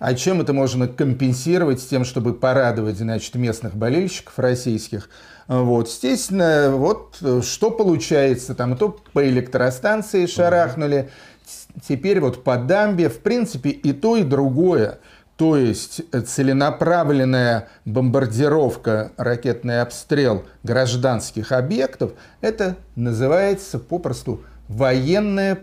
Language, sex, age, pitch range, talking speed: Russian, male, 40-59, 125-165 Hz, 105 wpm